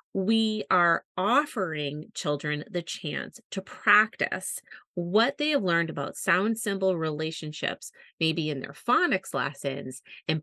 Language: English